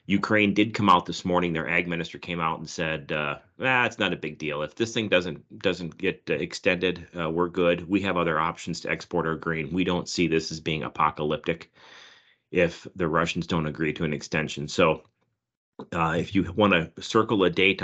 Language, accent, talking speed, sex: English, American, 210 wpm, male